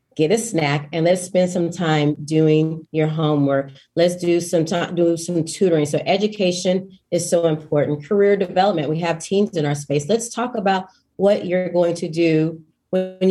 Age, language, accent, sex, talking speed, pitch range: 30-49, English, American, female, 180 wpm, 160-190 Hz